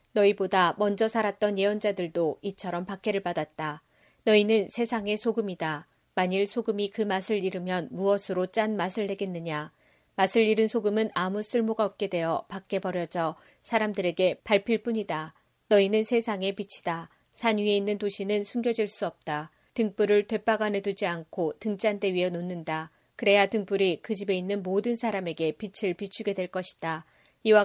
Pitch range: 180-210 Hz